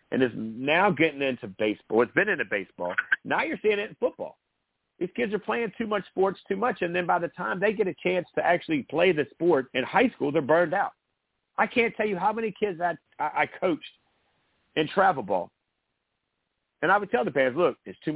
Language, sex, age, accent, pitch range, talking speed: English, male, 50-69, American, 130-185 Hz, 220 wpm